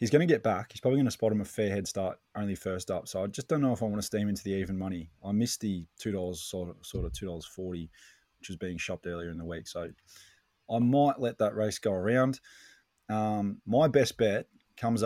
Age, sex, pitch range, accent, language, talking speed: 20-39, male, 95-115 Hz, Australian, English, 245 wpm